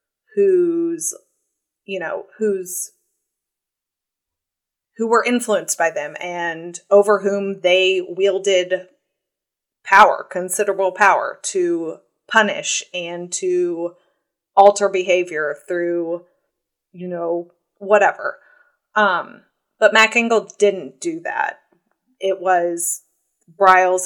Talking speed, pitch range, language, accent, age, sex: 90 wpm, 185-295 Hz, English, American, 30-49, female